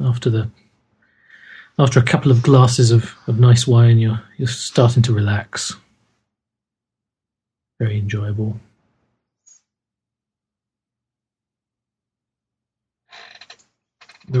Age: 40-59